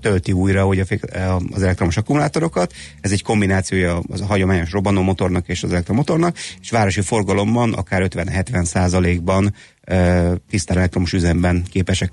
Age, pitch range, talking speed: 30-49, 90-105 Hz, 140 wpm